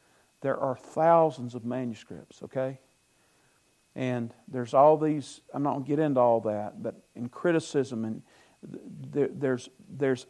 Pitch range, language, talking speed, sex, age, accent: 125-155 Hz, English, 145 wpm, male, 50-69, American